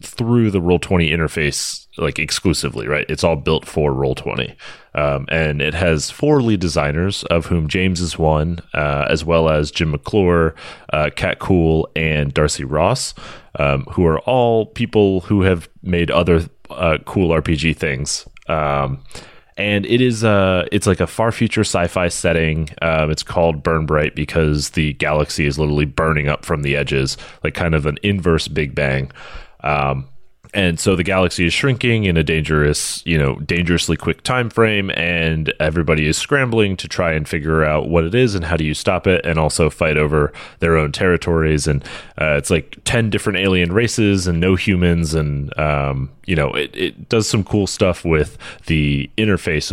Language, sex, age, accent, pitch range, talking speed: English, male, 30-49, American, 75-95 Hz, 180 wpm